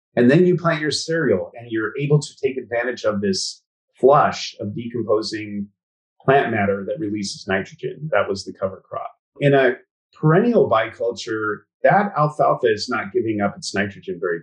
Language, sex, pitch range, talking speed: English, male, 100-165 Hz, 165 wpm